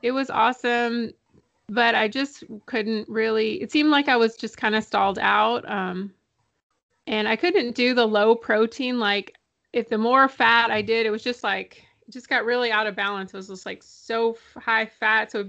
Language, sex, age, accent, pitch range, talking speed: English, female, 30-49, American, 210-245 Hz, 210 wpm